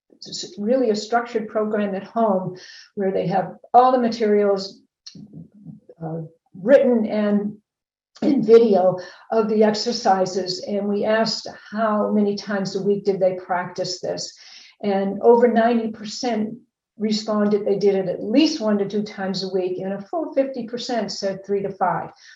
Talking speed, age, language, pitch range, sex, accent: 150 wpm, 50-69, English, 195-230 Hz, female, American